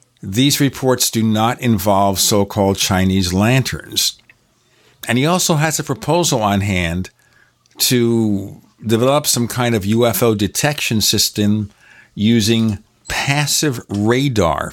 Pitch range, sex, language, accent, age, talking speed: 95-120 Hz, male, English, American, 50-69, 110 wpm